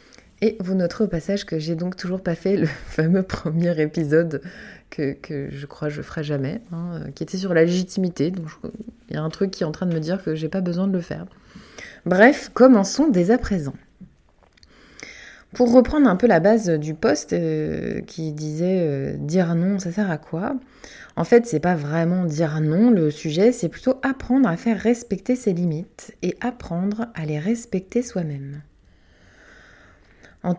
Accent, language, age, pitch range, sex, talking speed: French, French, 20-39, 155-215 Hz, female, 185 wpm